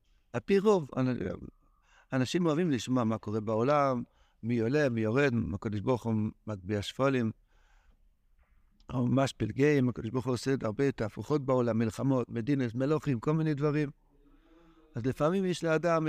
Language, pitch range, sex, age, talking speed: Hebrew, 115-160 Hz, male, 60-79, 145 wpm